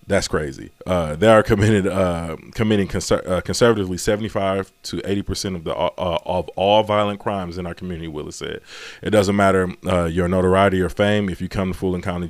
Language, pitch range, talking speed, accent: English, 85-105 Hz, 200 wpm, American